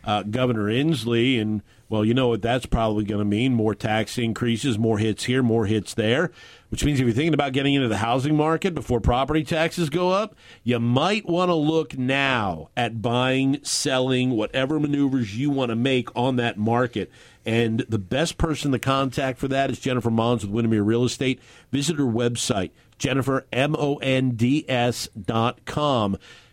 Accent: American